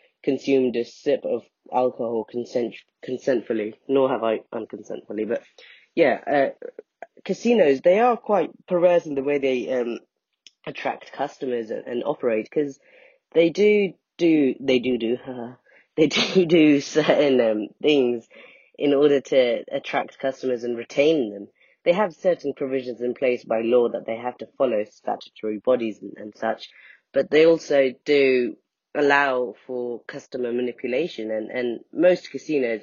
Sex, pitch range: female, 120-160 Hz